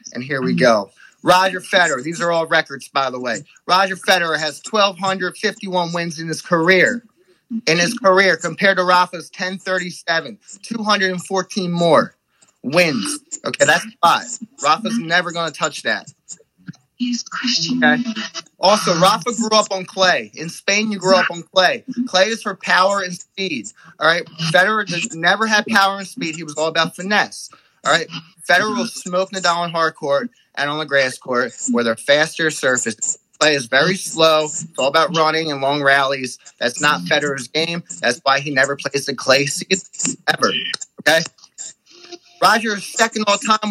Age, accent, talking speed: 30-49, American, 170 wpm